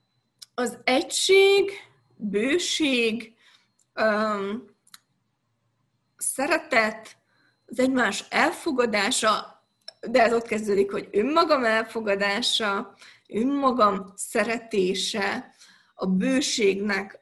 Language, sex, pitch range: Hungarian, female, 200-250 Hz